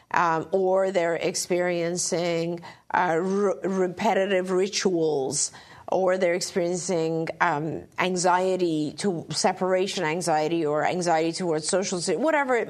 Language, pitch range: English, 175-220 Hz